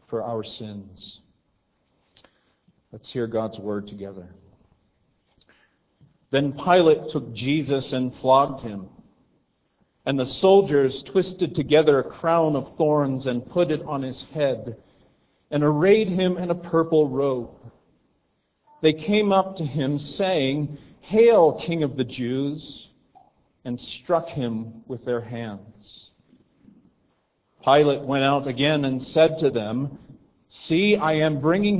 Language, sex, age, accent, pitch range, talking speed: English, male, 50-69, American, 130-165 Hz, 125 wpm